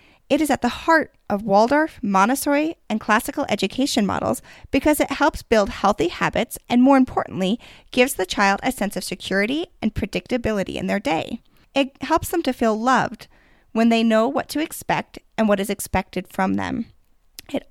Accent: American